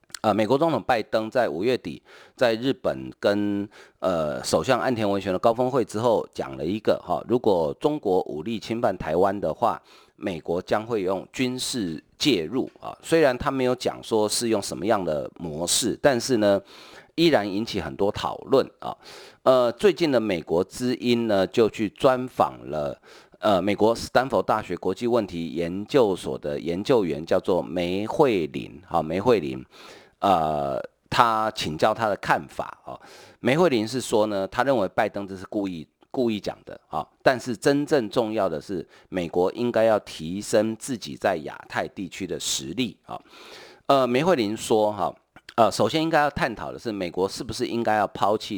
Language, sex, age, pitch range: Chinese, male, 40-59, 95-125 Hz